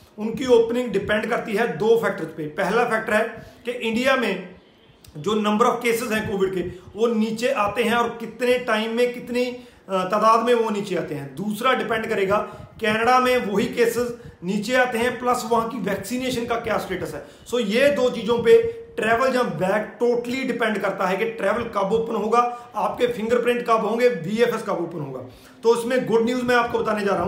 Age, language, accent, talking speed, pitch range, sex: 40-59, Hindi, native, 195 wpm, 205-240 Hz, male